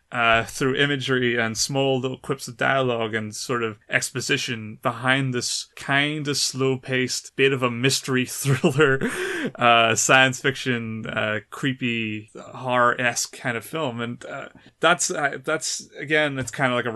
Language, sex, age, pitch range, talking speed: English, male, 30-49, 115-130 Hz, 160 wpm